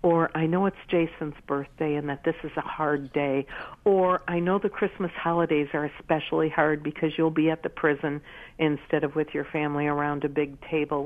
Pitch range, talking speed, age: 145-180 Hz, 200 wpm, 60-79